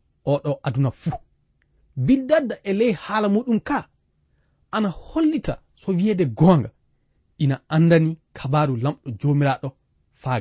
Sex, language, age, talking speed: male, English, 40-59, 105 wpm